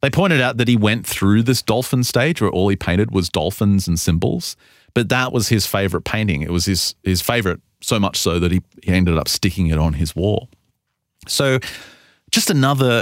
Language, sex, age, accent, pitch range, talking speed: English, male, 30-49, Australian, 95-120 Hz, 205 wpm